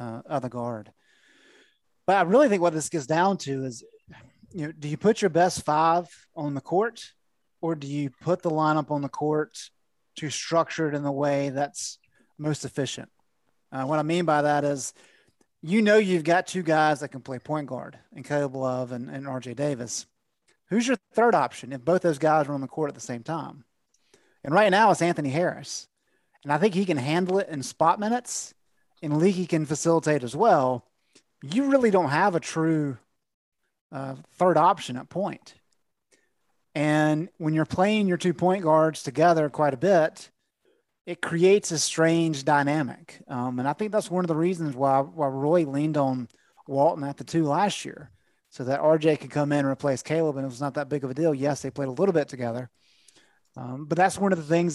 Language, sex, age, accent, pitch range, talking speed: English, male, 30-49, American, 140-170 Hz, 205 wpm